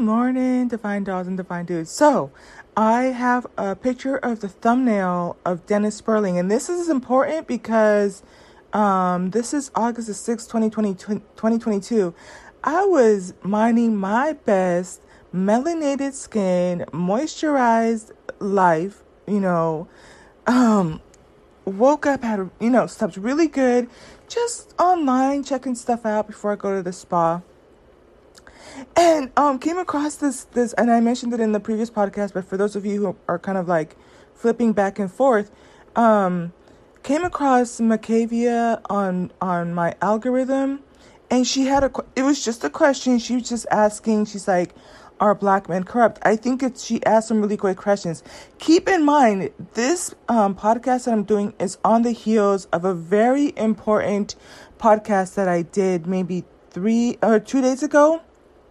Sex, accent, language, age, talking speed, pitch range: female, American, English, 30-49, 155 wpm, 195-255 Hz